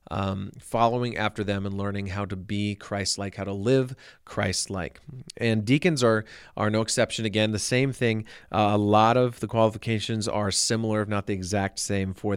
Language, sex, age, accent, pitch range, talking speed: English, male, 40-59, American, 105-120 Hz, 185 wpm